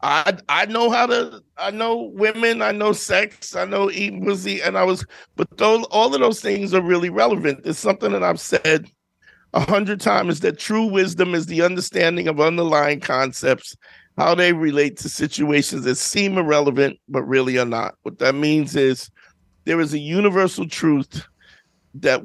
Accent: American